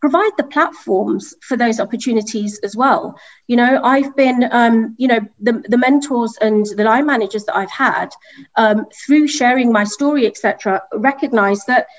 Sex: female